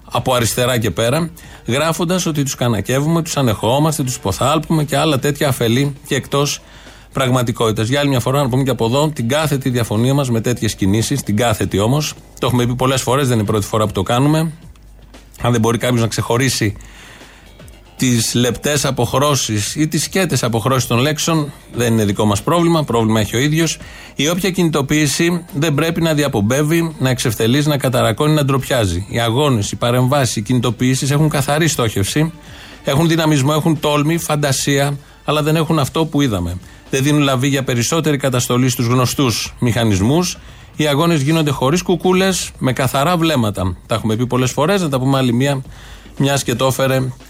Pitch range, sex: 120-150 Hz, male